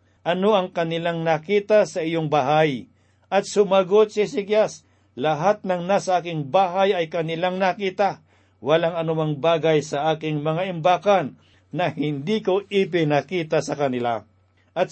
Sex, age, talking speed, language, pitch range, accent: male, 50-69, 135 wpm, Filipino, 145-185 Hz, native